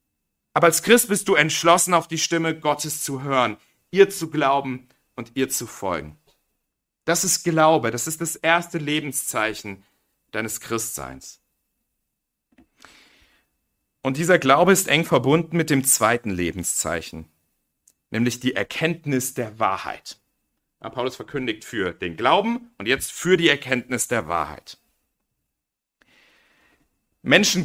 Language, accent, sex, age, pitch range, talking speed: German, German, male, 40-59, 115-160 Hz, 125 wpm